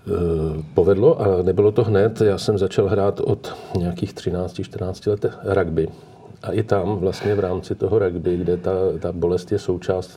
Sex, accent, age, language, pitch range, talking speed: male, native, 40-59, Czech, 85-105 Hz, 170 wpm